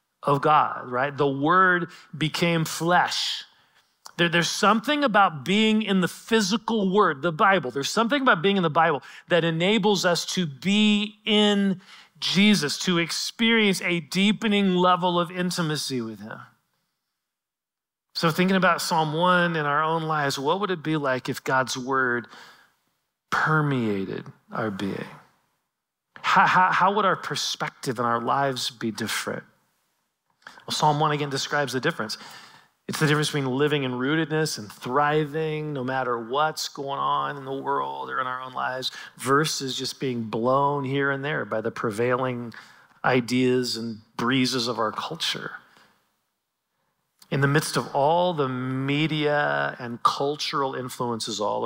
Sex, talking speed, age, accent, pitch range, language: male, 145 wpm, 40-59, American, 120-170 Hz, English